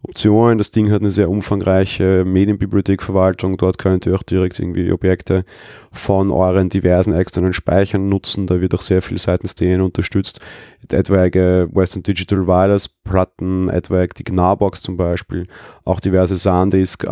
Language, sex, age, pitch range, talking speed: German, male, 30-49, 90-100 Hz, 145 wpm